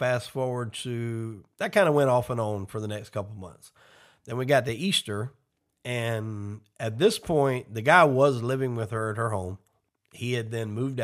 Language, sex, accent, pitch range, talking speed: English, male, American, 105-130 Hz, 200 wpm